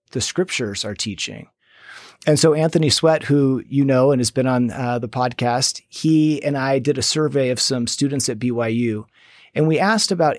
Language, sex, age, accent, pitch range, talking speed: English, male, 40-59, American, 120-160 Hz, 190 wpm